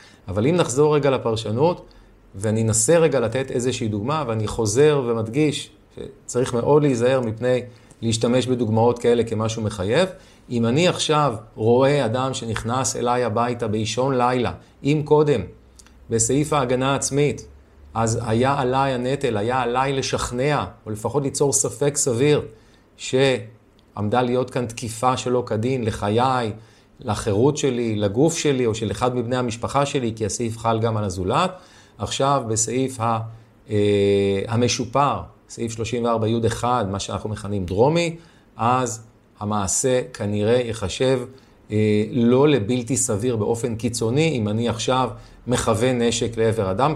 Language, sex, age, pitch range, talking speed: Hebrew, male, 30-49, 110-130 Hz, 125 wpm